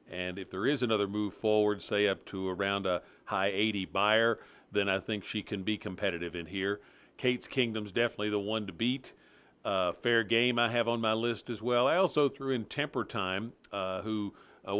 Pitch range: 100-120 Hz